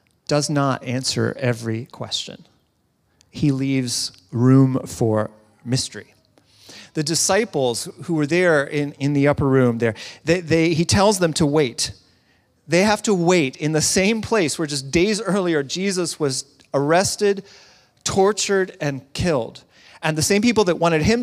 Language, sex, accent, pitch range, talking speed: English, male, American, 135-180 Hz, 145 wpm